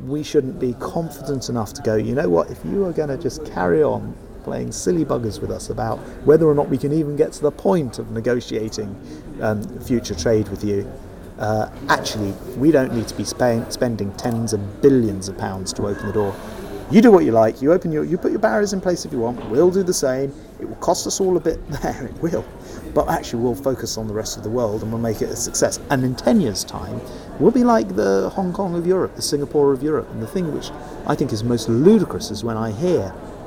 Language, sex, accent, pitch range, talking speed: English, male, British, 105-150 Hz, 240 wpm